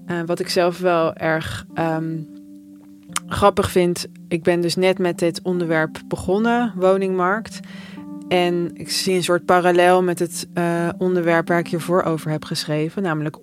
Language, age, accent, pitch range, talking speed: Dutch, 20-39, Dutch, 155-180 Hz, 155 wpm